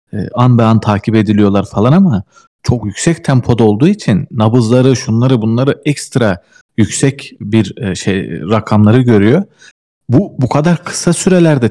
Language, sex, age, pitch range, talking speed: Turkish, male, 40-59, 105-140 Hz, 130 wpm